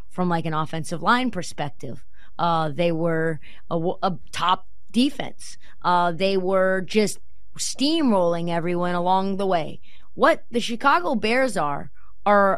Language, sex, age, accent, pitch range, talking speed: English, female, 20-39, American, 170-255 Hz, 135 wpm